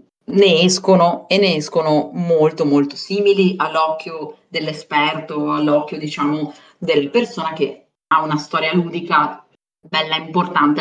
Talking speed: 120 wpm